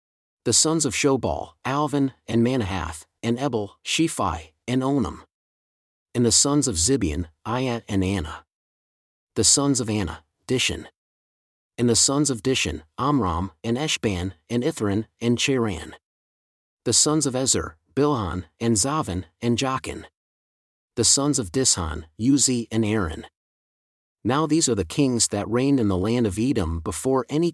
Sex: male